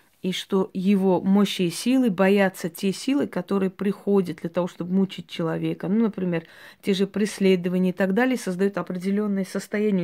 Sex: female